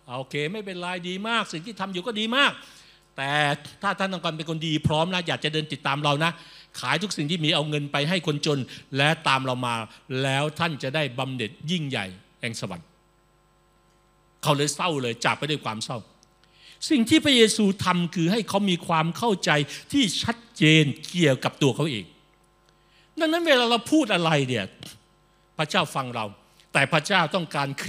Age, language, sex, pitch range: 60-79, Thai, male, 150-220 Hz